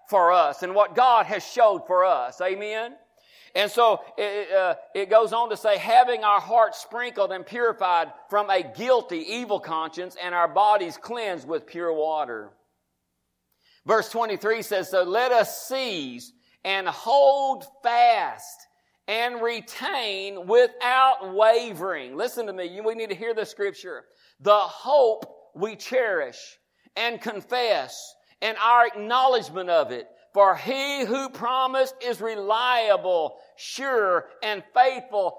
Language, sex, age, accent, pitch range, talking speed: English, male, 50-69, American, 205-260 Hz, 135 wpm